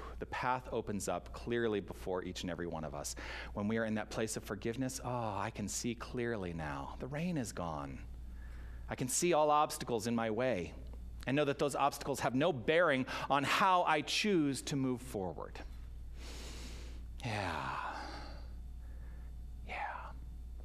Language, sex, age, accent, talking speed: English, male, 40-59, American, 160 wpm